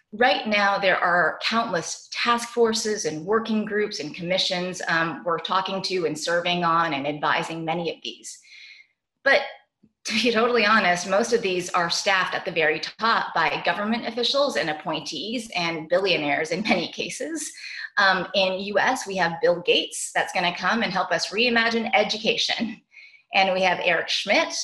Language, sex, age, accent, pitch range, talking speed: English, female, 30-49, American, 175-235 Hz, 170 wpm